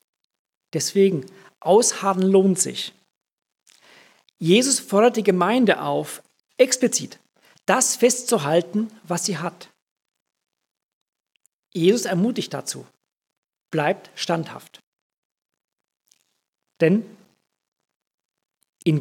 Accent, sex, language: German, male, German